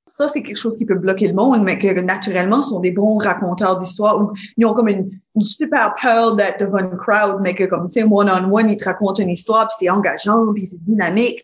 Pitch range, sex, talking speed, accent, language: 195-235 Hz, female, 230 wpm, Canadian, French